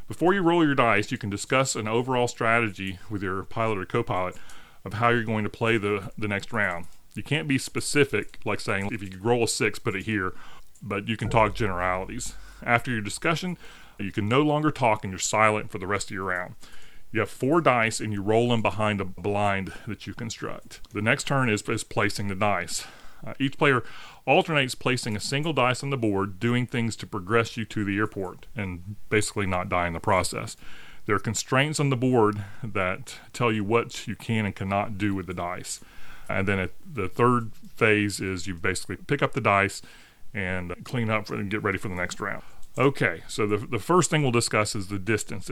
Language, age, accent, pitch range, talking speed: English, 30-49, American, 100-120 Hz, 215 wpm